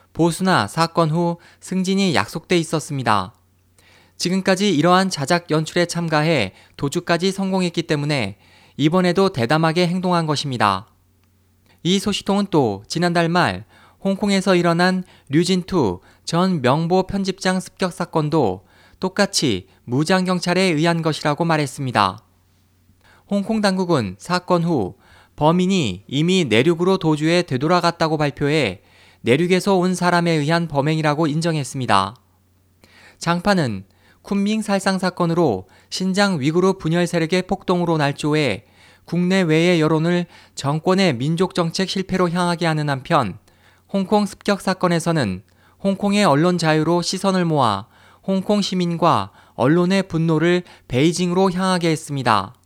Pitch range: 115-185 Hz